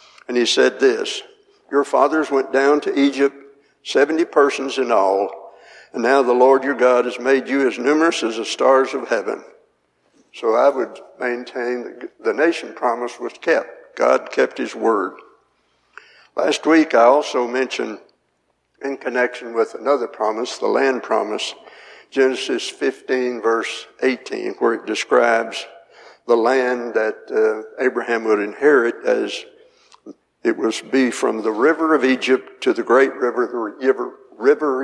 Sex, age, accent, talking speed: male, 60-79, American, 150 wpm